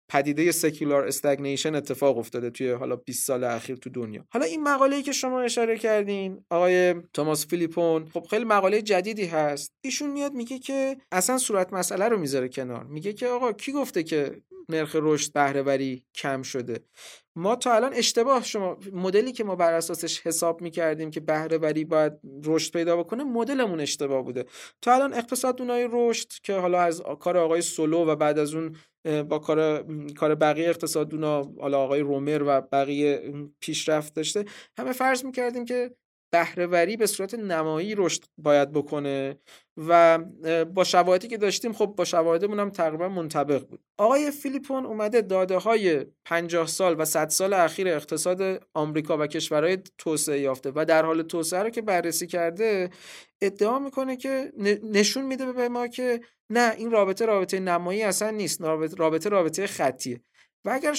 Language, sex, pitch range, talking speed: Persian, male, 155-215 Hz, 160 wpm